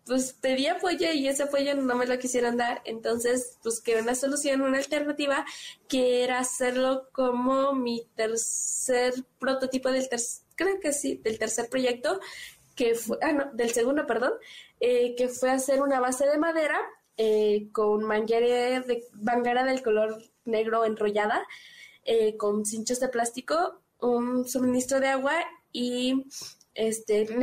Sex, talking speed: female, 150 wpm